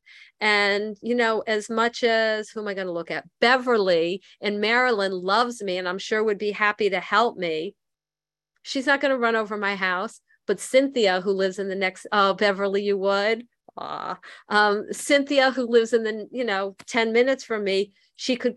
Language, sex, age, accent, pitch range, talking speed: English, female, 50-69, American, 180-225 Hz, 195 wpm